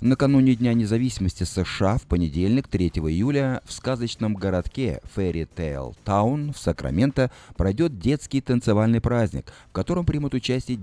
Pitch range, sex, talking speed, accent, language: 85-125 Hz, male, 135 wpm, native, Russian